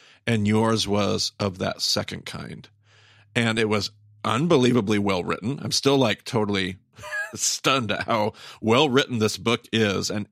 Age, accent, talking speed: 40-59, American, 140 wpm